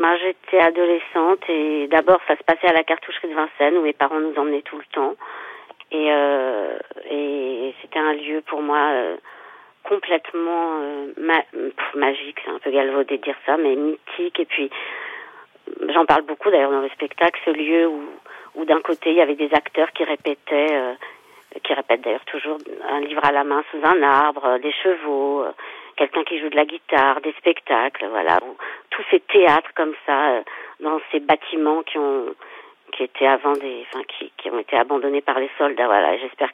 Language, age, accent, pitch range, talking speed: French, 40-59, French, 145-170 Hz, 180 wpm